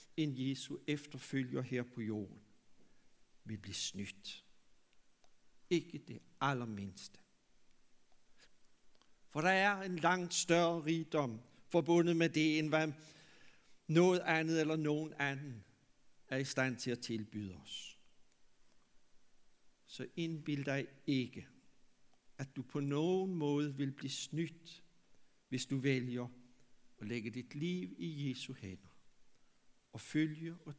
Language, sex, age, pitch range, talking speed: Danish, male, 60-79, 125-165 Hz, 120 wpm